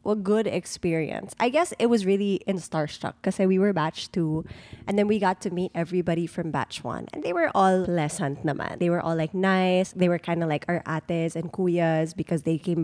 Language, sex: English, female